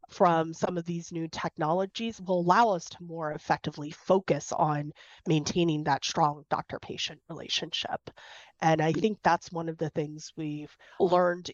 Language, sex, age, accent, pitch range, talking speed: English, female, 30-49, American, 150-180 Hz, 150 wpm